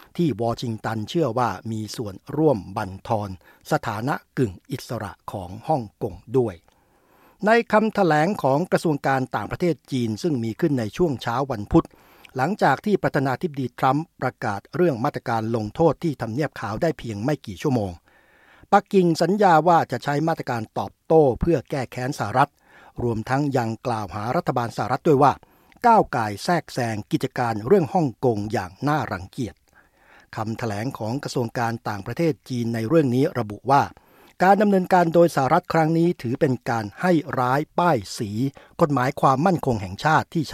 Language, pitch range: Thai, 115-155 Hz